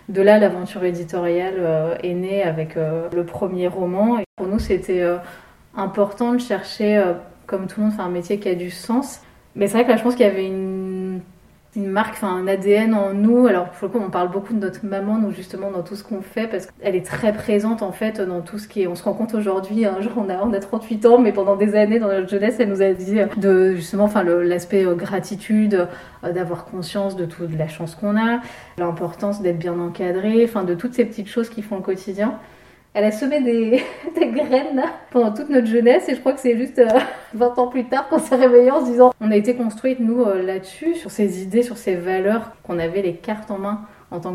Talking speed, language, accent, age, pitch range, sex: 235 wpm, French, French, 20-39, 185-220 Hz, female